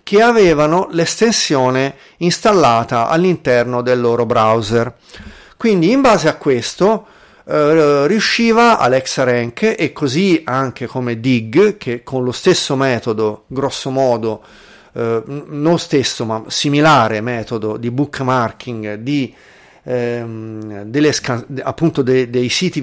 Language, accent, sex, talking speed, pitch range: Italian, native, male, 105 wpm, 130-175 Hz